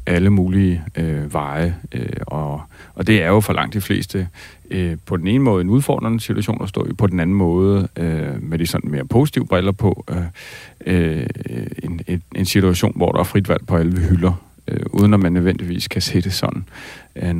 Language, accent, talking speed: Danish, native, 205 wpm